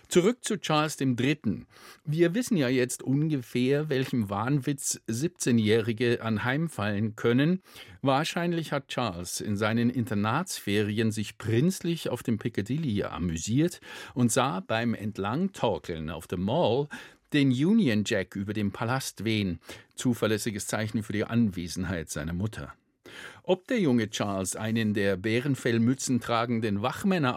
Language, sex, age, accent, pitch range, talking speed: German, male, 50-69, German, 105-150 Hz, 125 wpm